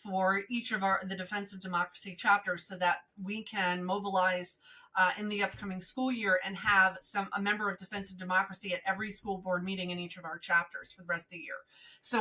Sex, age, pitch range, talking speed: female, 30-49, 185-210 Hz, 220 wpm